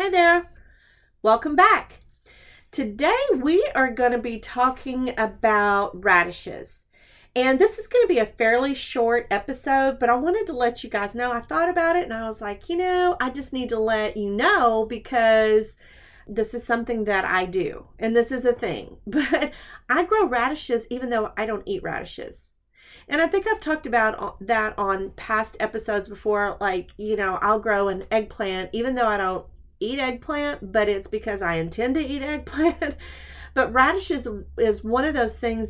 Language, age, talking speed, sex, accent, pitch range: English, 40-59, 185 wpm, female, American, 205-270 Hz